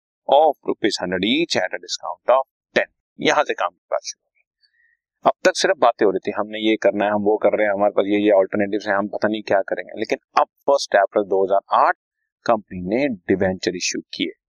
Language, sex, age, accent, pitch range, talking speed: Hindi, male, 30-49, native, 100-140 Hz, 205 wpm